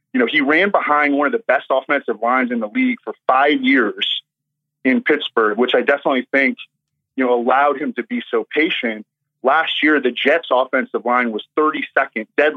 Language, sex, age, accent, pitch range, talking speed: English, male, 30-49, American, 120-145 Hz, 190 wpm